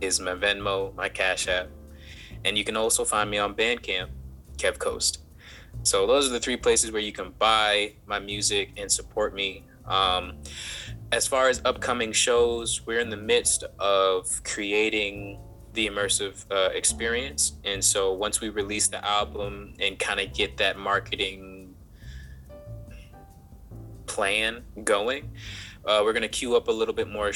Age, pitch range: 20-39, 95-115 Hz